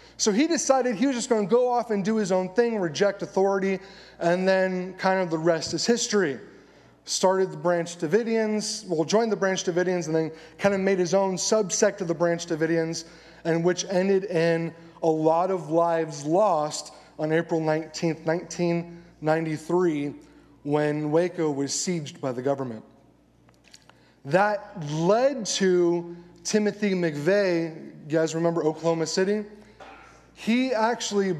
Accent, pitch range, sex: American, 160-200 Hz, male